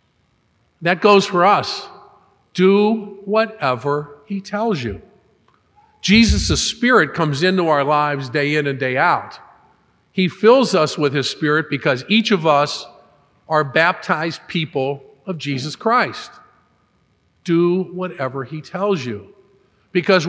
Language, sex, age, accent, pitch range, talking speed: English, male, 50-69, American, 145-200 Hz, 125 wpm